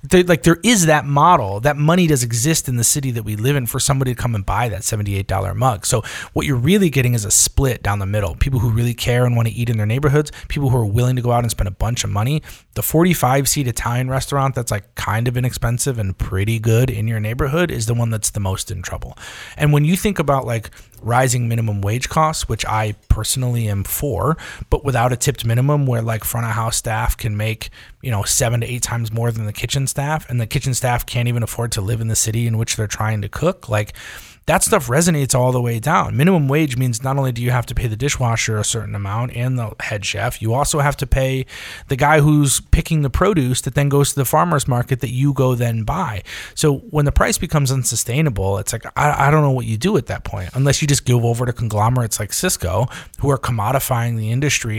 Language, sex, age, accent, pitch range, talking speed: English, male, 30-49, American, 110-140 Hz, 245 wpm